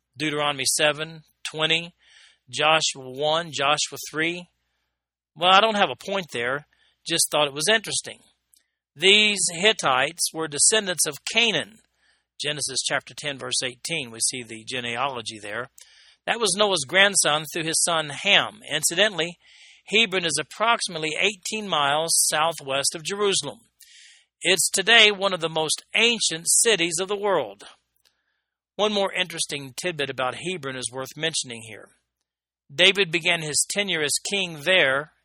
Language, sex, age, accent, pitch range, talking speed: English, male, 40-59, American, 140-190 Hz, 135 wpm